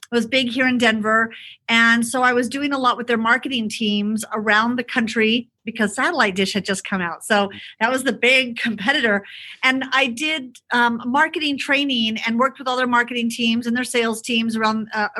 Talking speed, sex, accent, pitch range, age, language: 200 wpm, female, American, 220-260 Hz, 40-59, English